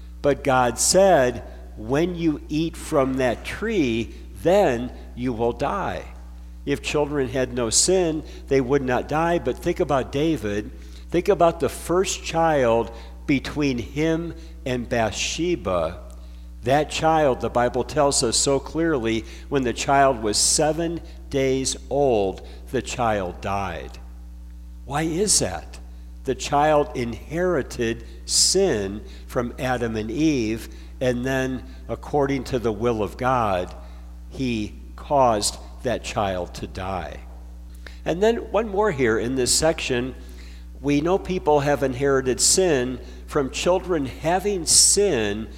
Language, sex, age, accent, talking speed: English, male, 60-79, American, 125 wpm